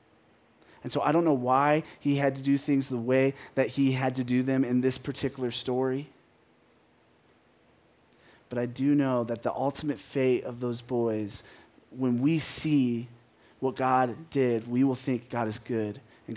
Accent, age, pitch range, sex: American, 30-49, 115-135 Hz, male